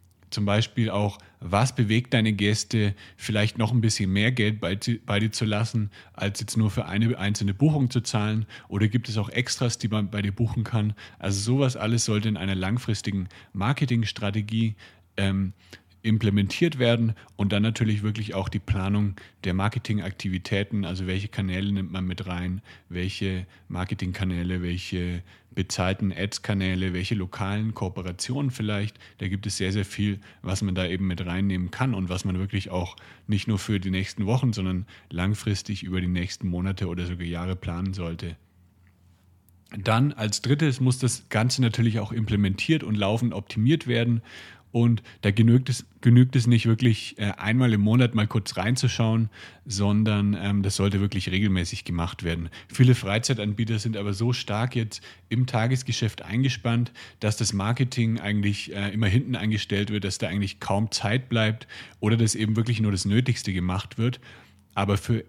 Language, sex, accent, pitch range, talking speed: German, male, German, 95-115 Hz, 165 wpm